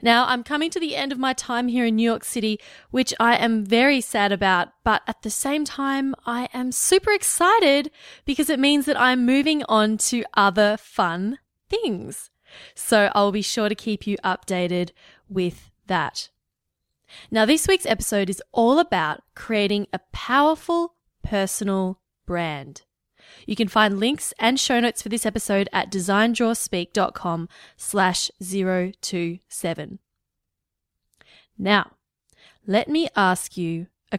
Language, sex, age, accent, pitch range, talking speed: English, female, 20-39, Australian, 190-265 Hz, 145 wpm